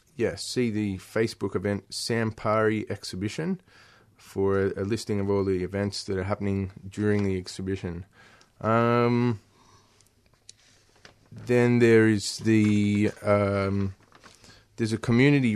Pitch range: 100-115 Hz